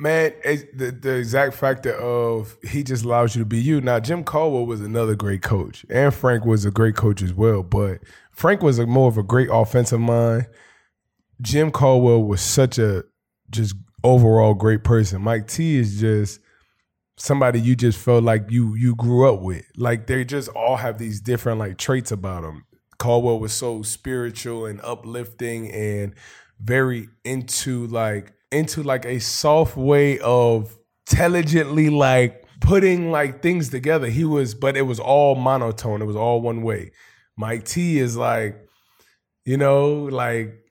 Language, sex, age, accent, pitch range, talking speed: English, male, 20-39, American, 115-140 Hz, 170 wpm